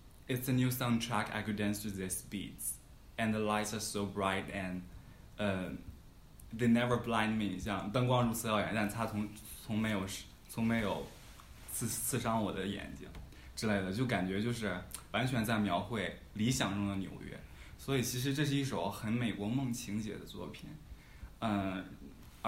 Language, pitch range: Chinese, 95-115 Hz